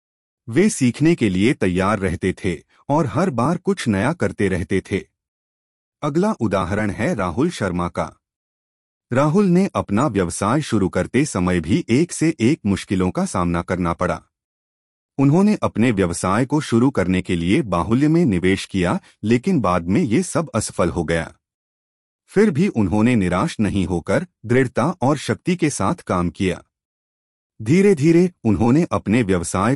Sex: male